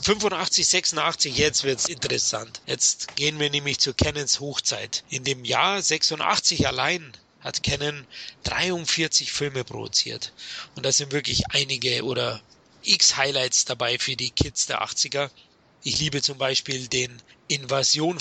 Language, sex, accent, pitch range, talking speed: German, male, German, 130-160 Hz, 140 wpm